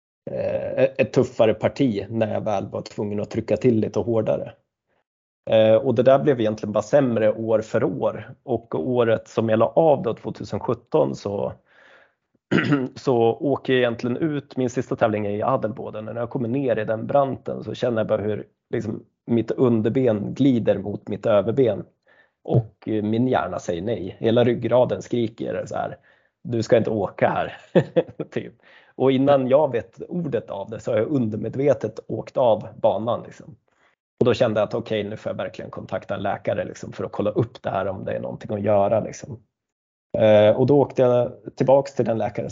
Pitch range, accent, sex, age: 110-125 Hz, native, male, 30-49